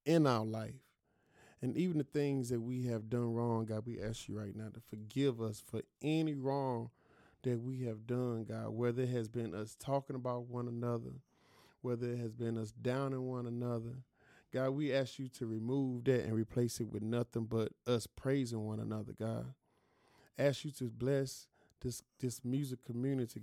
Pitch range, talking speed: 115-135 Hz, 185 wpm